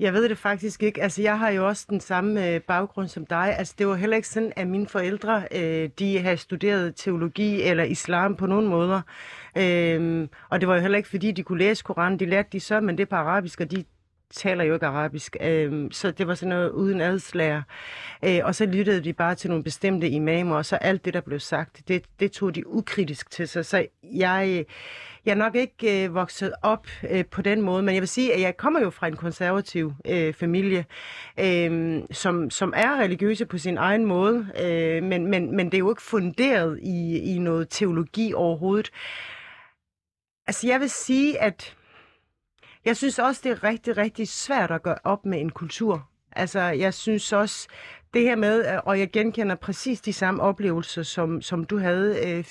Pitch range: 170-210 Hz